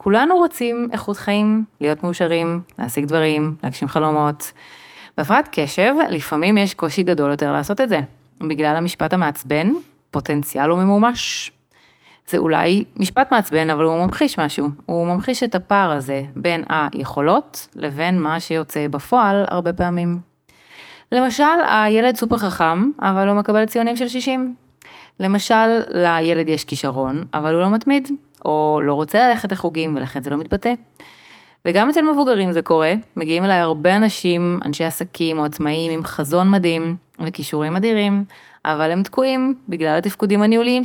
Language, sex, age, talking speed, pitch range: Hebrew, female, 30-49, 145 wpm, 155-215 Hz